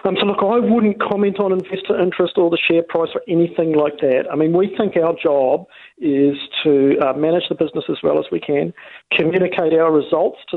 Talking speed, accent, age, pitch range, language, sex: 215 wpm, Australian, 50-69, 135-175 Hz, English, male